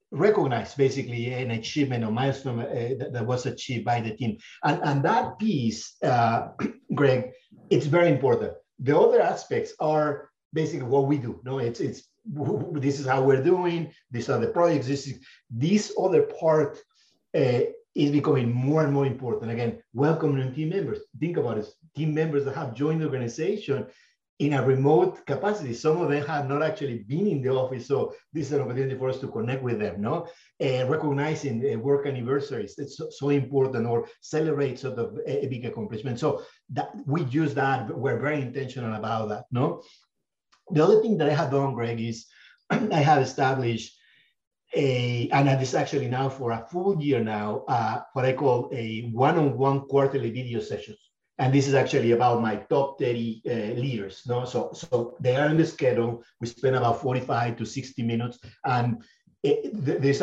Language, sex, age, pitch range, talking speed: English, male, 50-69, 120-155 Hz, 185 wpm